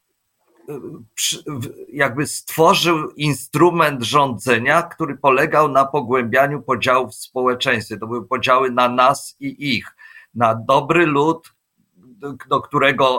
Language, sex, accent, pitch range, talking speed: Polish, male, native, 125-150 Hz, 105 wpm